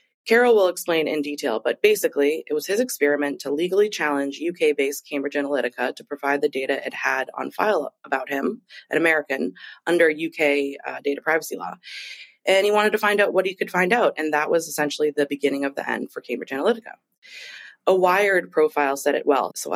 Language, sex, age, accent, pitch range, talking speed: English, female, 20-39, American, 140-200 Hz, 195 wpm